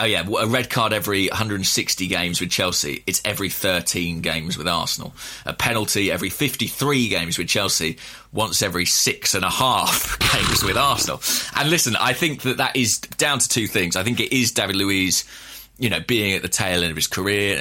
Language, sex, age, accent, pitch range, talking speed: English, male, 20-39, British, 90-130 Hz, 200 wpm